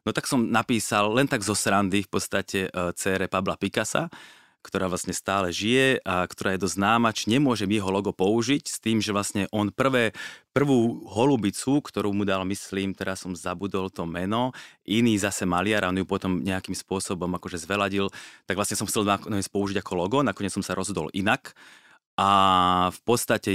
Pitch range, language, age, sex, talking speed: 95-115 Hz, Slovak, 30-49, male, 175 wpm